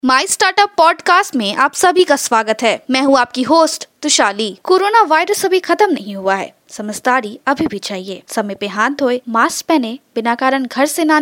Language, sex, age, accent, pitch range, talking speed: Hindi, female, 20-39, native, 225-310 Hz, 195 wpm